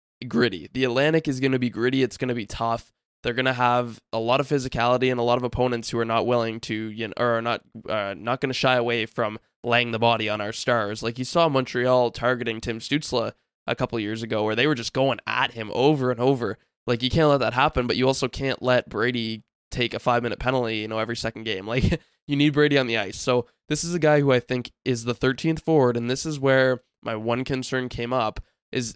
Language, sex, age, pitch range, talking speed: English, male, 20-39, 115-135 Hz, 250 wpm